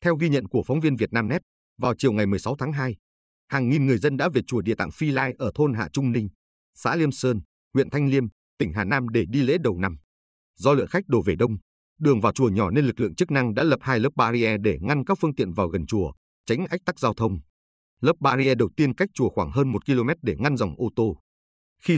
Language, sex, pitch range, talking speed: Vietnamese, male, 95-140 Hz, 250 wpm